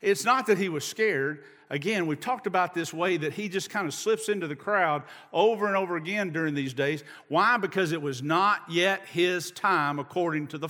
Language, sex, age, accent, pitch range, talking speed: English, male, 50-69, American, 145-220 Hz, 220 wpm